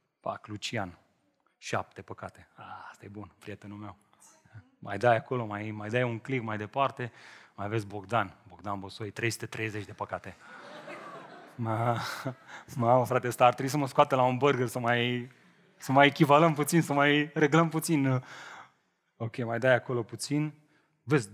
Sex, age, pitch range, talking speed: male, 30-49, 110-155 Hz, 155 wpm